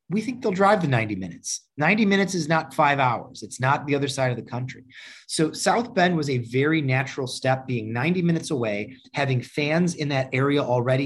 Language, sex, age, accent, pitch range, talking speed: English, male, 30-49, American, 125-160 Hz, 210 wpm